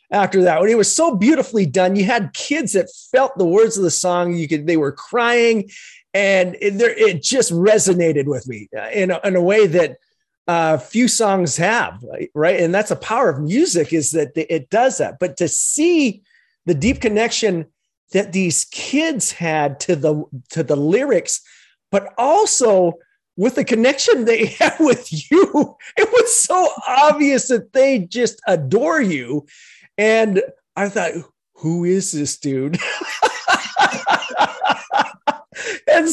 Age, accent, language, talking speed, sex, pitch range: 30-49, American, English, 150 wpm, male, 170-275 Hz